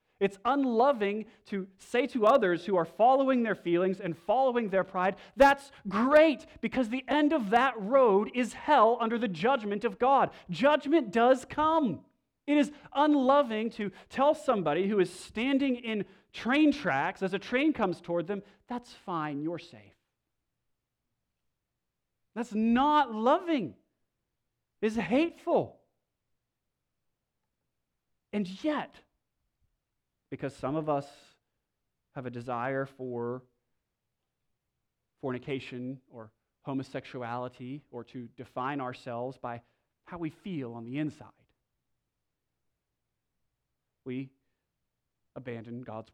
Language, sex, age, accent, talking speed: English, male, 40-59, American, 115 wpm